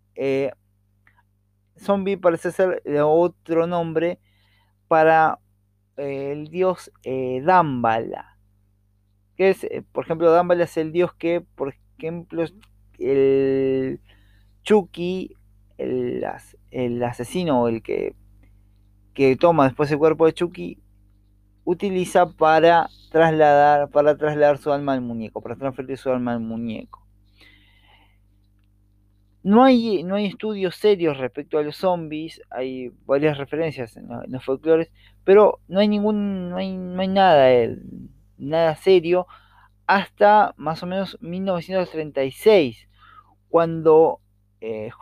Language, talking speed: Spanish, 120 wpm